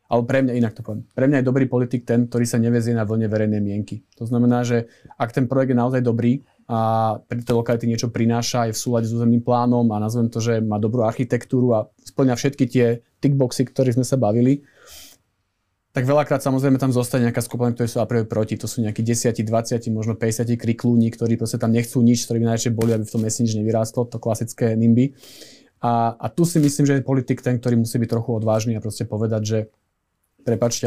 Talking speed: 215 wpm